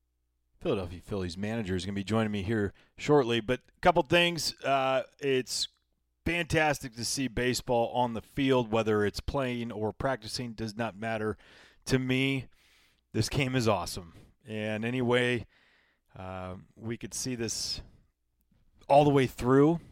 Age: 30-49